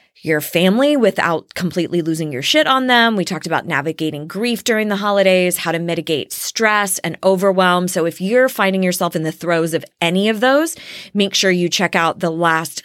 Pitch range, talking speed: 165-215 Hz, 195 wpm